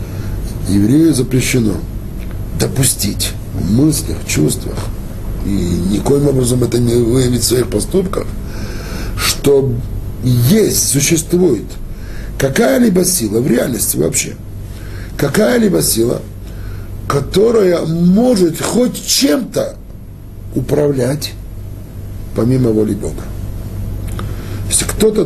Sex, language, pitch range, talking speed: male, Russian, 105-150 Hz, 85 wpm